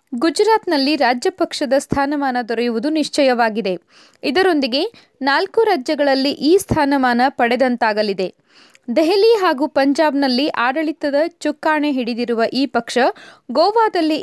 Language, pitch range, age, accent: Kannada, 255-345 Hz, 20-39, native